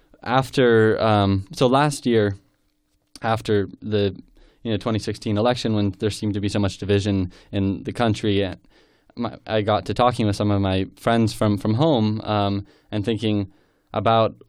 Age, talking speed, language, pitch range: 20-39, 155 wpm, English, 95-110 Hz